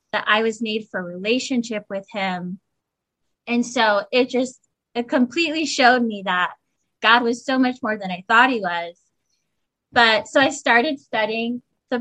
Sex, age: female, 20-39